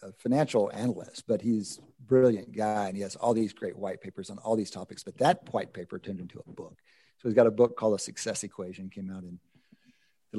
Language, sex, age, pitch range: English, male, 50-69, 105-150 Hz